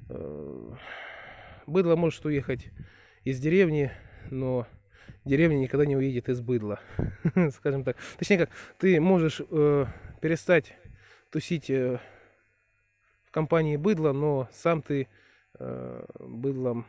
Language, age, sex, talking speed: Russian, 20-39, male, 95 wpm